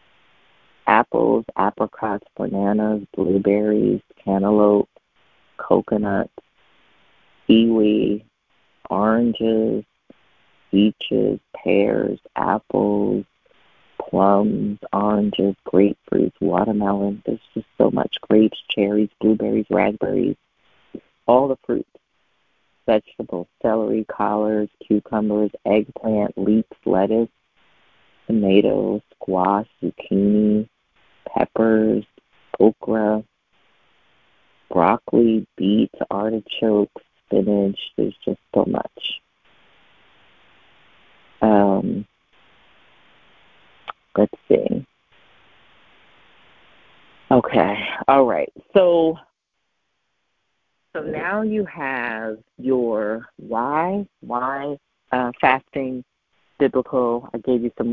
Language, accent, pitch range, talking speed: English, American, 105-120 Hz, 70 wpm